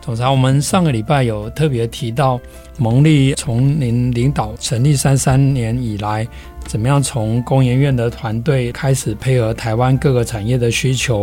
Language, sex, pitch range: Chinese, male, 115-130 Hz